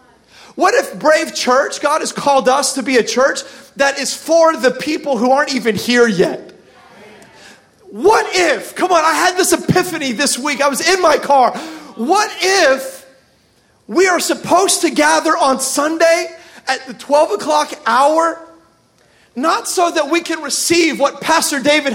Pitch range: 275-350 Hz